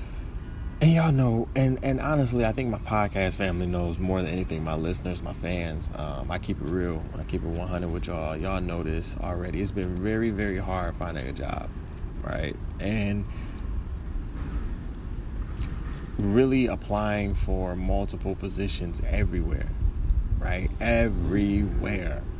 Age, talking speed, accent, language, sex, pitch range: 20-39, 140 wpm, American, English, male, 80-100 Hz